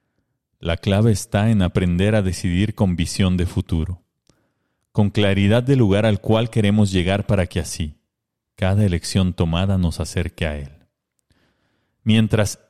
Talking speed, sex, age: 140 wpm, male, 40-59